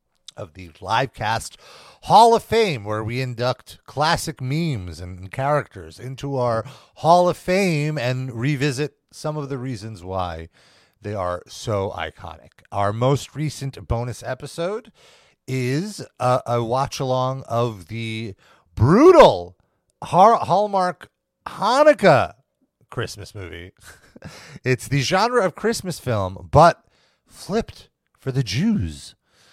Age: 40-59